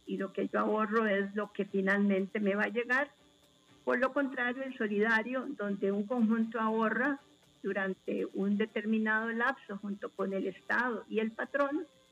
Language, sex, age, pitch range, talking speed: Spanish, female, 50-69, 205-240 Hz, 165 wpm